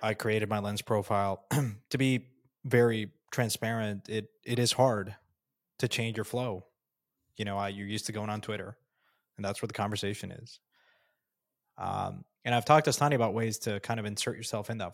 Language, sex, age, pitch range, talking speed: English, male, 20-39, 105-125 Hz, 190 wpm